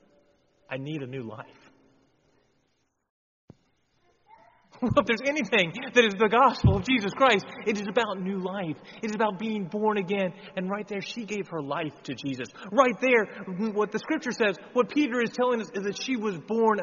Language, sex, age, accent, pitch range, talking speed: English, male, 30-49, American, 145-215 Hz, 180 wpm